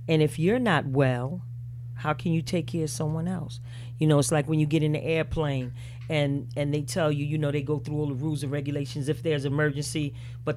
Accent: American